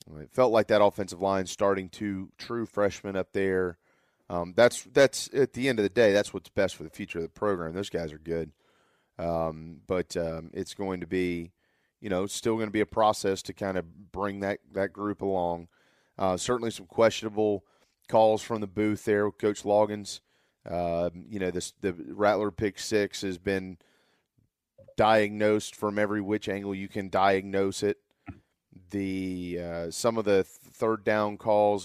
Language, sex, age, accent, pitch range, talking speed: English, male, 30-49, American, 95-110 Hz, 180 wpm